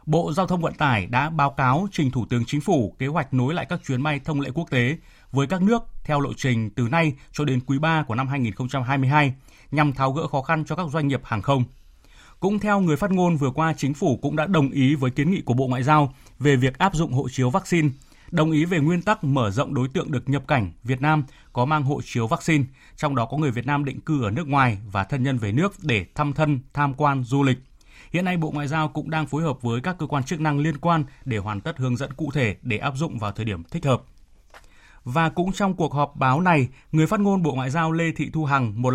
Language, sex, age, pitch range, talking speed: Vietnamese, male, 20-39, 125-160 Hz, 260 wpm